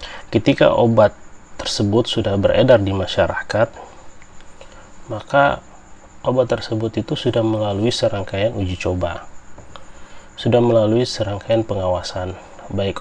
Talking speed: 95 wpm